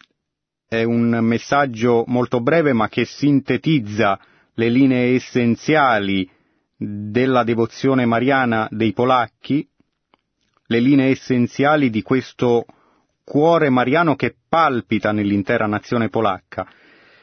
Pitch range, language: 105-130 Hz, Italian